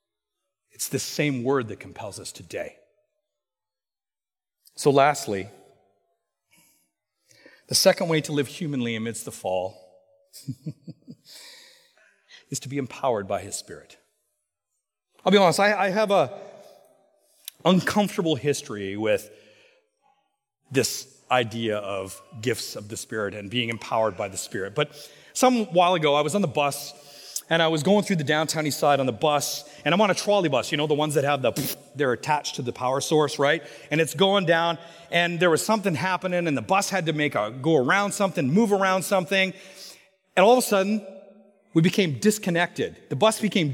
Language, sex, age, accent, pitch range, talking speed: English, male, 40-59, American, 145-200 Hz, 165 wpm